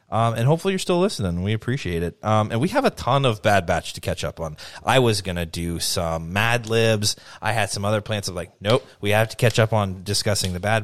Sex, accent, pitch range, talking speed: male, American, 100-125 Hz, 265 wpm